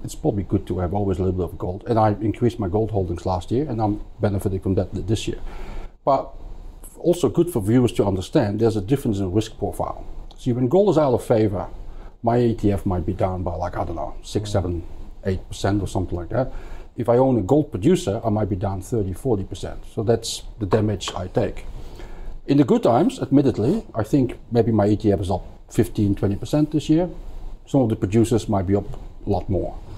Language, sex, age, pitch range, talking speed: English, male, 50-69, 95-120 Hz, 220 wpm